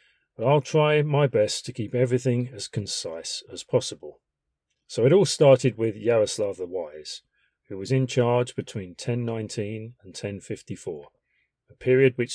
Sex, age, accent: male, 40-59, British